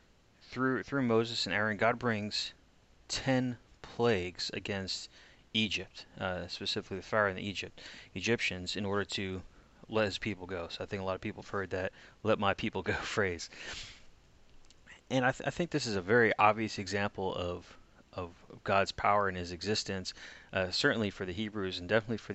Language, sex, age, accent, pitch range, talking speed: English, male, 30-49, American, 90-105 Hz, 185 wpm